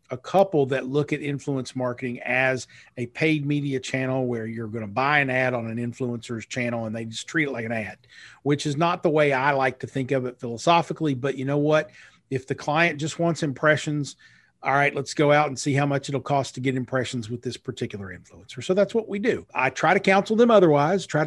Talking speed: 235 wpm